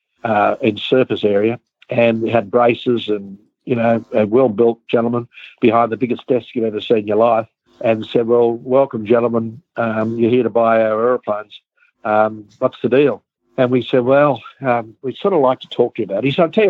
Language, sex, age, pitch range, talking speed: English, male, 60-79, 110-130 Hz, 205 wpm